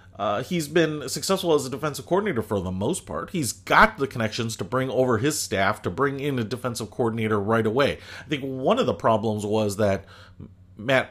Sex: male